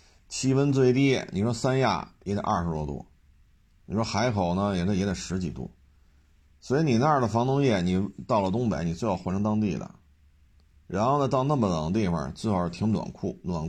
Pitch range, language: 80-110 Hz, Chinese